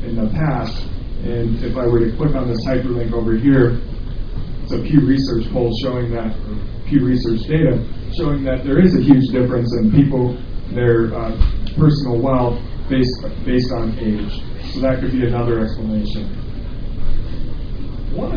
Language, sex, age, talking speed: English, male, 40-59, 160 wpm